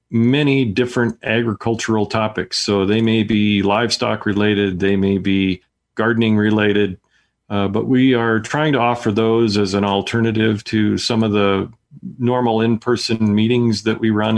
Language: English